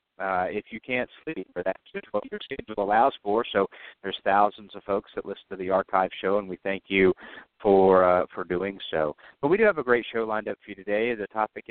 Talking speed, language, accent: 225 wpm, English, American